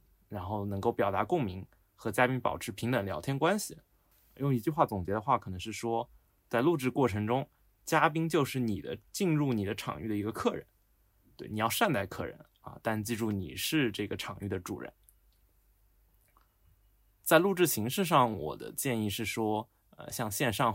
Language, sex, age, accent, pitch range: Chinese, male, 20-39, native, 105-135 Hz